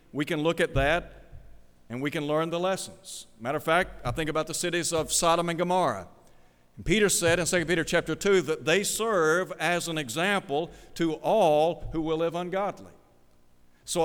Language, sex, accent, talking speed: English, male, American, 185 wpm